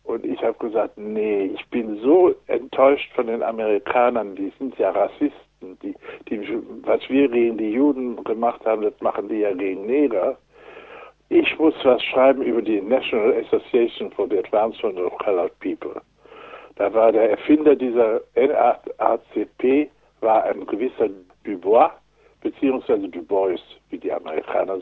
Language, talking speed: German, 150 wpm